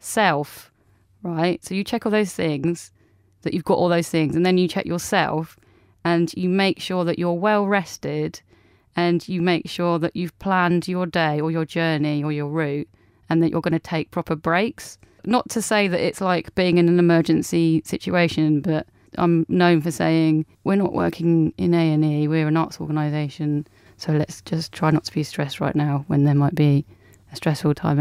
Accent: British